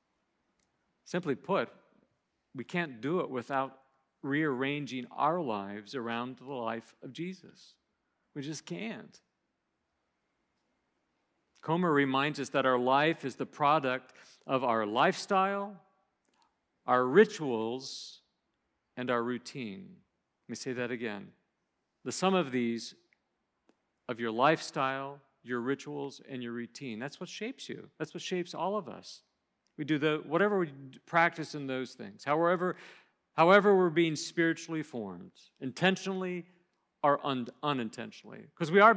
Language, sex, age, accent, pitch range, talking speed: English, male, 50-69, American, 130-180 Hz, 130 wpm